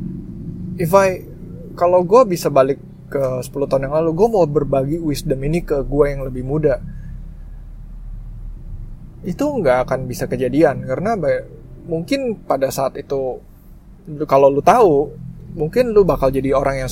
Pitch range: 125-160 Hz